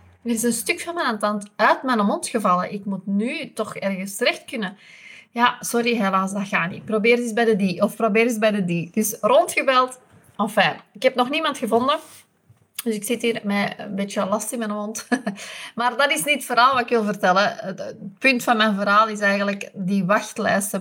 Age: 30-49